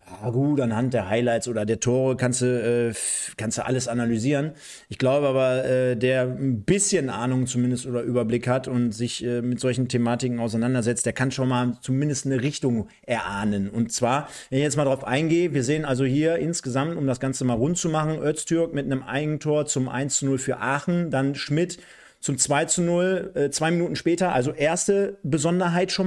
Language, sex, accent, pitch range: German, male, German, 130-175 Hz